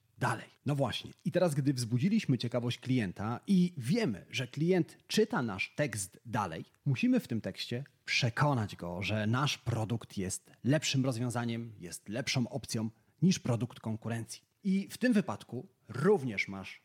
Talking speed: 145 wpm